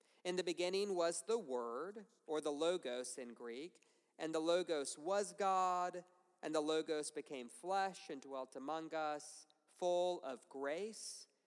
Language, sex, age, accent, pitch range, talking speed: English, male, 40-59, American, 155-220 Hz, 145 wpm